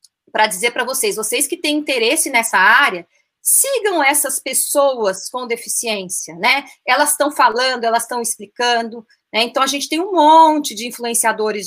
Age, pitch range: 30-49, 210-265 Hz